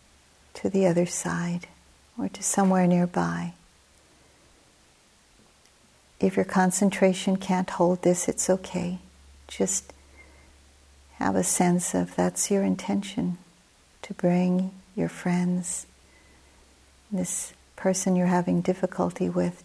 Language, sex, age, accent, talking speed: English, female, 60-79, American, 105 wpm